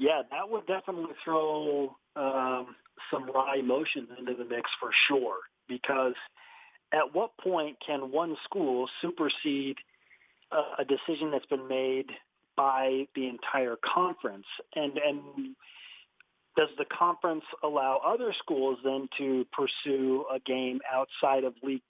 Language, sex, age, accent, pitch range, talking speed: English, male, 40-59, American, 135-180 Hz, 130 wpm